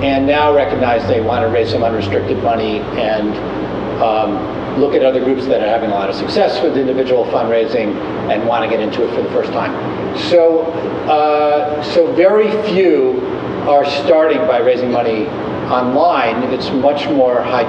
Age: 50-69